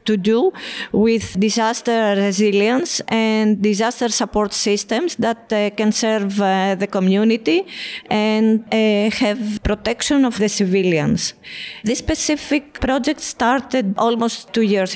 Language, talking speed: English, 120 wpm